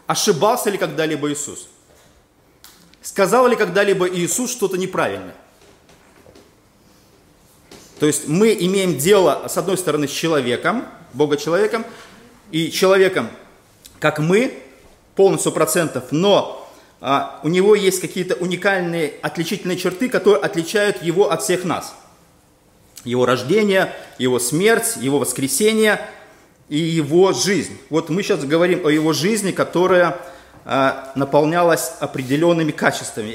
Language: Russian